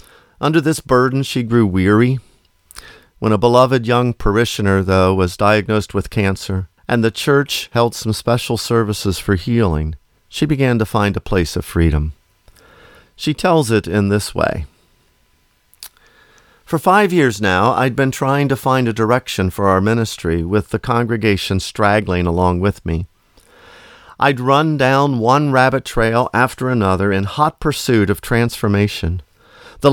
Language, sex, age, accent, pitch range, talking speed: English, male, 50-69, American, 105-145 Hz, 150 wpm